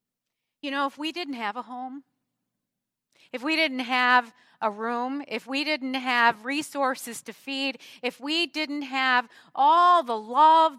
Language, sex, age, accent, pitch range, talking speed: English, female, 50-69, American, 200-275 Hz, 155 wpm